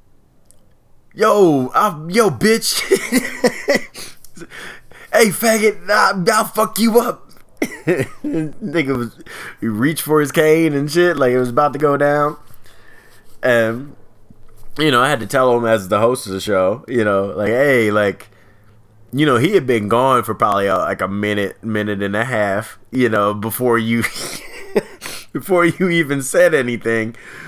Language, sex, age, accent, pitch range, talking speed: English, male, 20-39, American, 105-140 Hz, 155 wpm